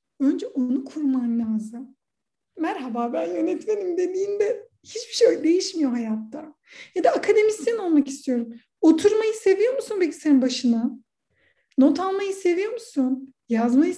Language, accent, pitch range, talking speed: Turkish, native, 260-375 Hz, 120 wpm